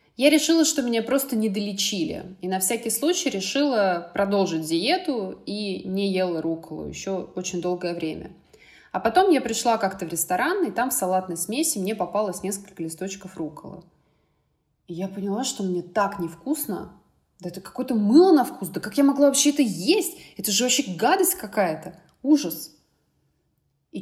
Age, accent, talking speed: 20-39, native, 160 wpm